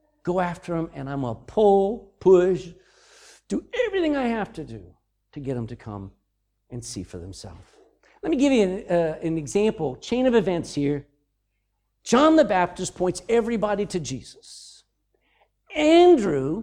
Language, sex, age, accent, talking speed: English, male, 50-69, American, 155 wpm